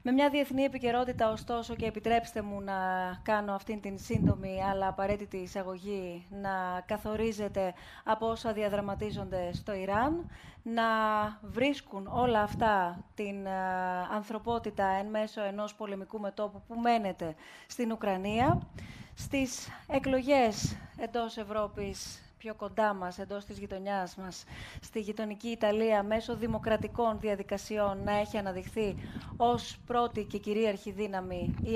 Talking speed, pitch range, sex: 120 wpm, 200-230 Hz, female